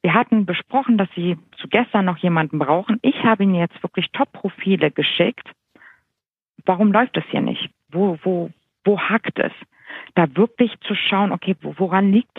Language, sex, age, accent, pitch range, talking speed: German, female, 50-69, German, 165-220 Hz, 175 wpm